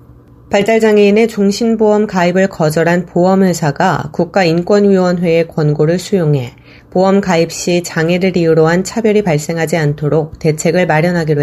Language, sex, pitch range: Korean, female, 155-195 Hz